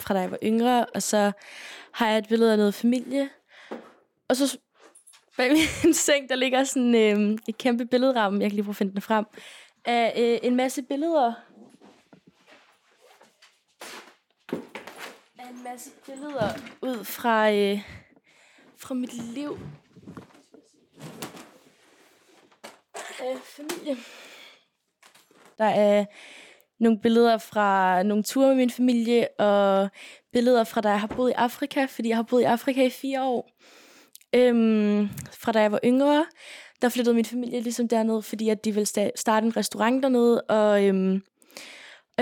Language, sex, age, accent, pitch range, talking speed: Danish, female, 20-39, native, 215-255 Hz, 145 wpm